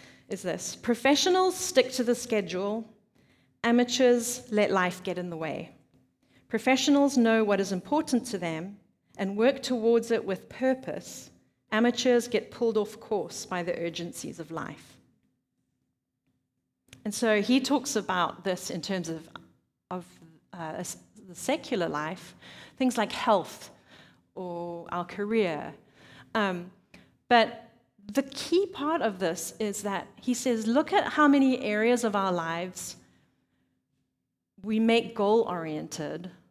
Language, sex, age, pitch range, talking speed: English, female, 40-59, 185-245 Hz, 130 wpm